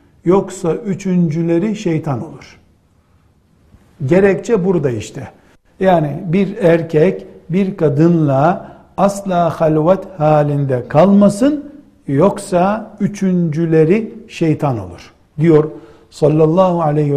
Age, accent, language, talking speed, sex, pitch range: 60-79, native, Turkish, 80 wpm, male, 145-195 Hz